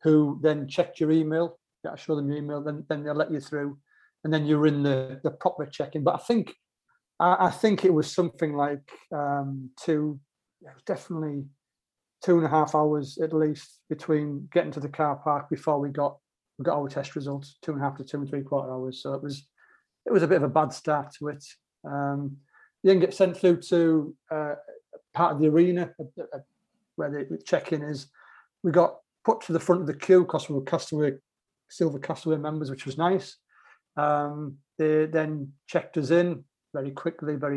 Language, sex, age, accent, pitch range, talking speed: English, male, 30-49, British, 145-165 Hz, 200 wpm